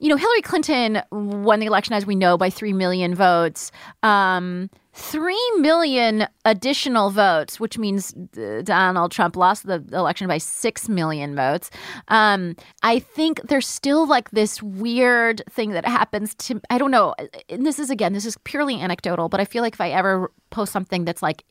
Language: English